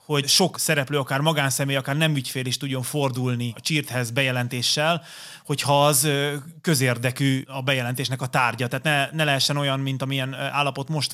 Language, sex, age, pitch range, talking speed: Hungarian, male, 30-49, 130-150 Hz, 160 wpm